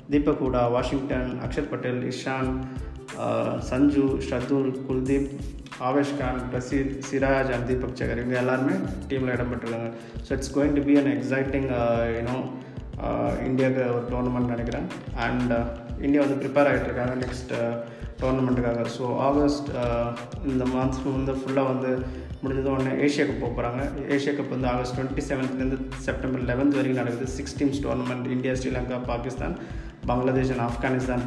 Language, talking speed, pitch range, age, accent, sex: Tamil, 130 wpm, 120-135 Hz, 20-39, native, male